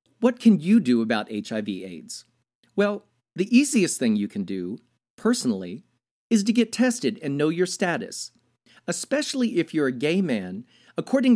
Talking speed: 155 wpm